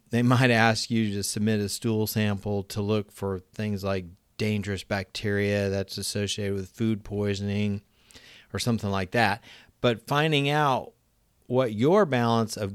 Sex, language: male, English